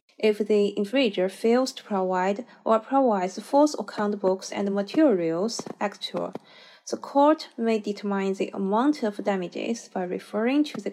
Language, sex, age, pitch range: Chinese, female, 20-39, 195-240 Hz